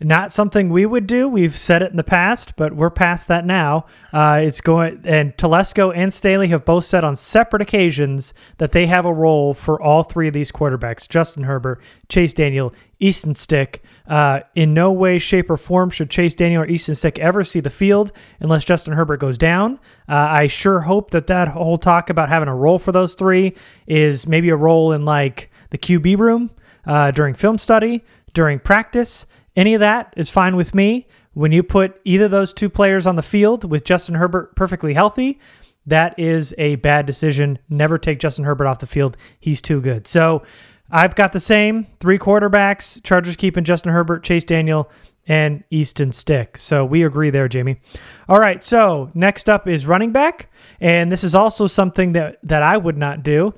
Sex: male